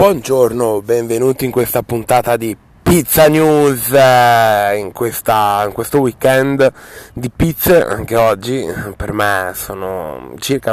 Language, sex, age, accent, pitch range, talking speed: Italian, male, 20-39, native, 105-125 Hz, 115 wpm